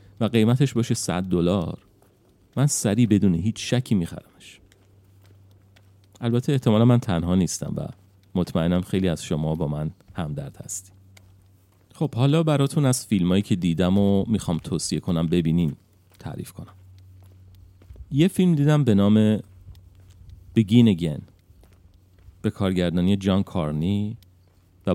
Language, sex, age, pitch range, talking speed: Persian, male, 40-59, 85-110 Hz, 125 wpm